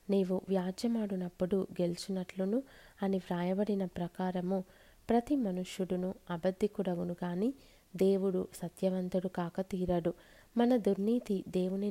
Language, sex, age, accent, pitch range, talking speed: Telugu, female, 20-39, native, 180-205 Hz, 85 wpm